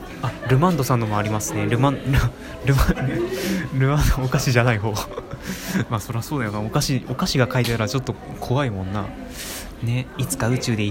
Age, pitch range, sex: 20-39, 110-140 Hz, male